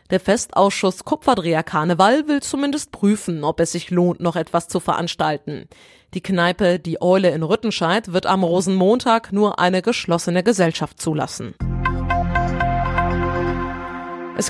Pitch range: 170-210 Hz